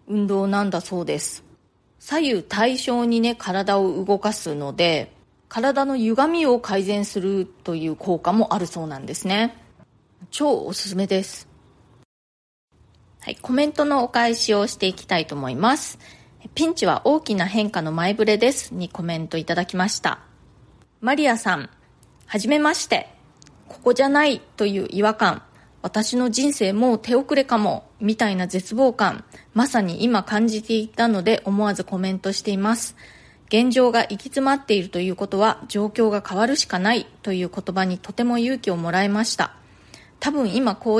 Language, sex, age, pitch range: Japanese, female, 20-39, 190-240 Hz